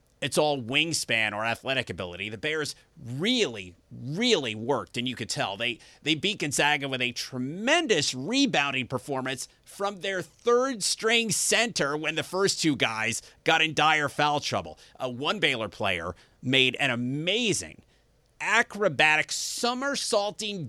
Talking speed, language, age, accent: 135 wpm, English, 30-49, American